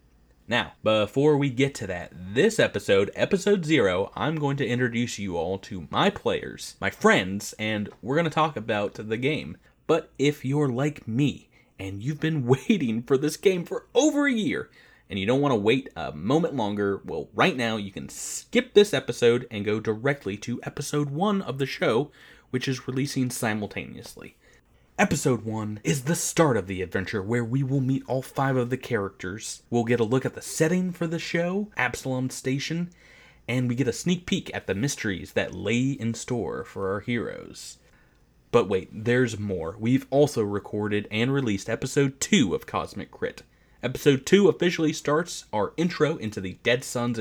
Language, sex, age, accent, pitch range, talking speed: English, male, 30-49, American, 110-150 Hz, 185 wpm